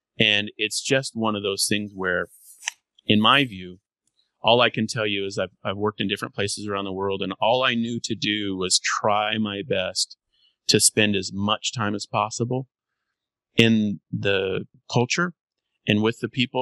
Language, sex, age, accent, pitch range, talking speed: English, male, 30-49, American, 100-120 Hz, 180 wpm